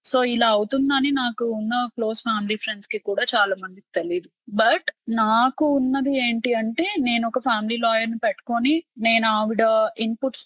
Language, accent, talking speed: Telugu, native, 155 wpm